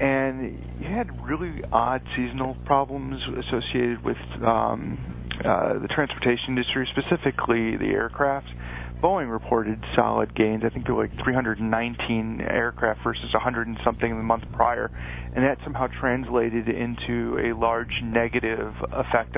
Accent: American